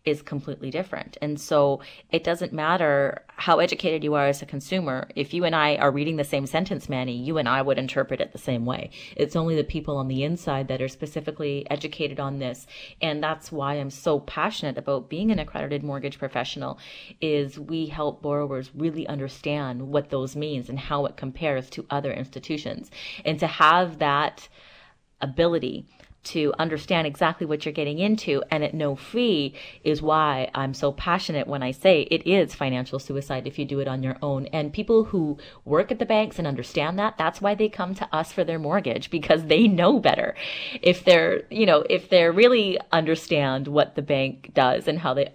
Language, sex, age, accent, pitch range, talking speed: English, female, 30-49, American, 140-170 Hz, 195 wpm